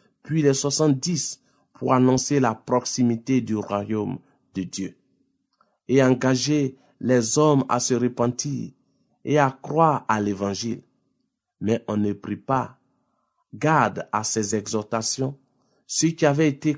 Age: 50-69